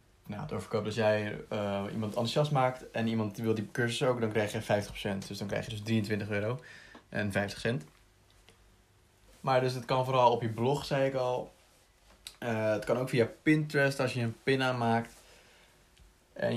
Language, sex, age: Dutch, male, 20-39